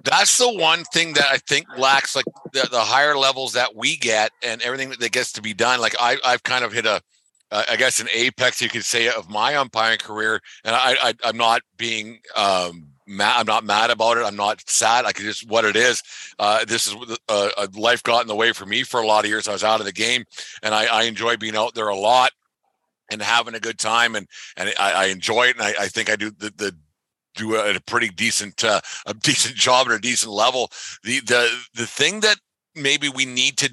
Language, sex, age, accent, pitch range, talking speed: English, male, 50-69, American, 110-135 Hz, 245 wpm